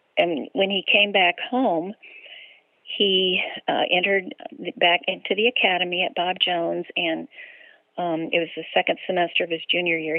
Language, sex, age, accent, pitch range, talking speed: English, female, 50-69, American, 170-210 Hz, 160 wpm